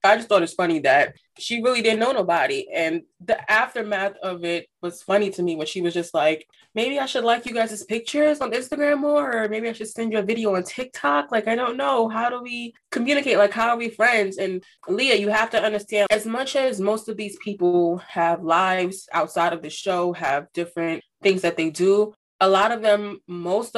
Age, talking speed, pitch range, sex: 20-39, 220 wpm, 165-215 Hz, female